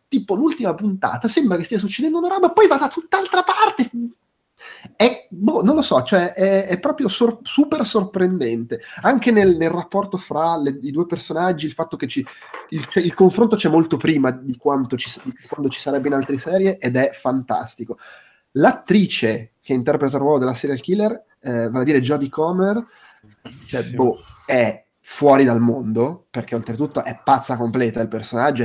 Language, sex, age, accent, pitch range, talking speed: Italian, male, 30-49, native, 130-190 Hz, 180 wpm